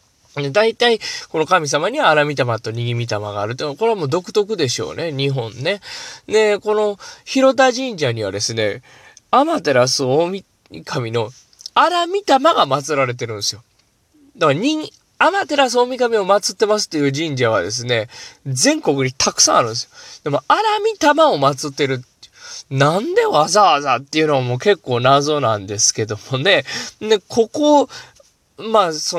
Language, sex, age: Japanese, male, 20-39